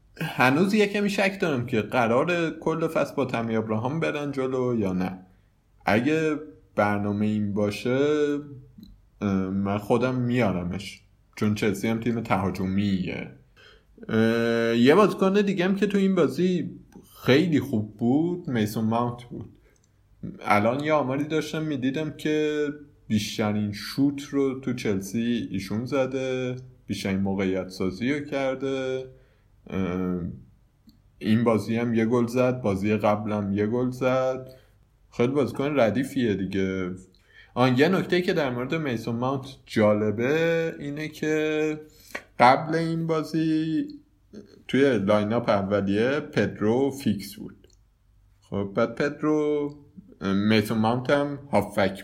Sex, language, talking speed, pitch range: male, Persian, 115 wpm, 105-145 Hz